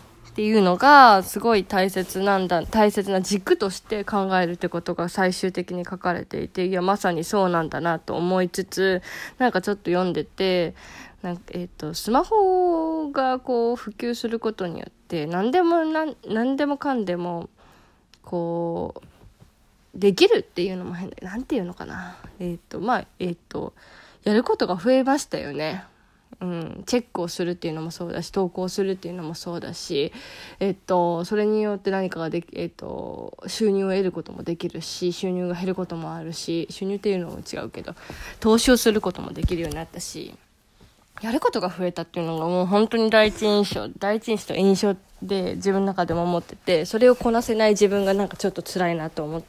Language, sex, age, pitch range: Japanese, female, 20-39, 175-220 Hz